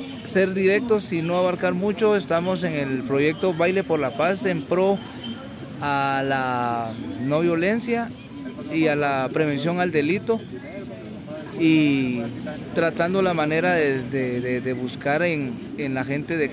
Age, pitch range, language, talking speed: 40-59, 140-195 Hz, Spanish, 145 wpm